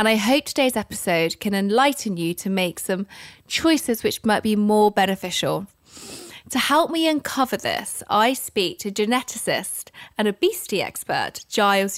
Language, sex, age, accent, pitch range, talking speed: English, female, 20-39, British, 190-240 Hz, 150 wpm